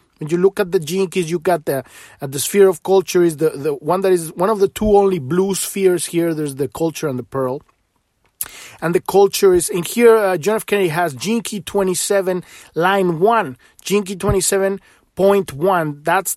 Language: English